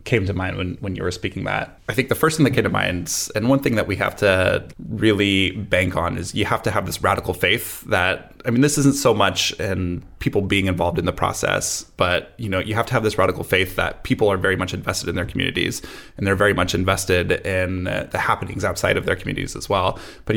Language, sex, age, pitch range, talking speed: English, male, 20-39, 95-115 Hz, 245 wpm